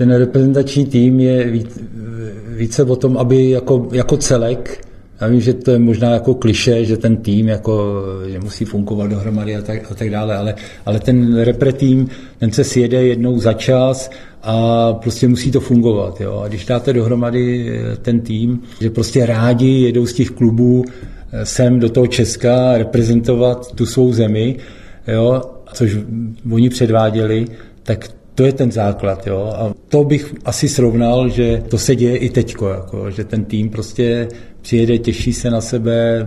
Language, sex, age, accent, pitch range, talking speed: Czech, male, 50-69, native, 110-125 Hz, 165 wpm